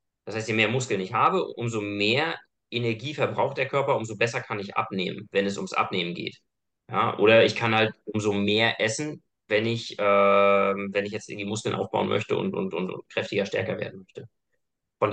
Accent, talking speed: German, 200 wpm